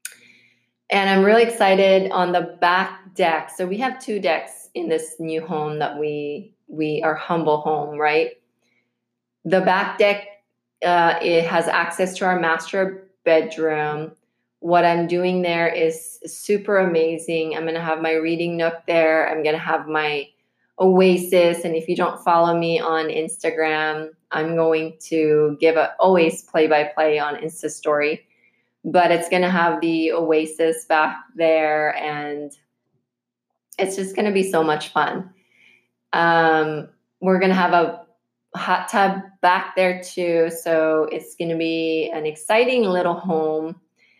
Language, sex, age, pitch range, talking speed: English, female, 20-39, 155-180 Hz, 150 wpm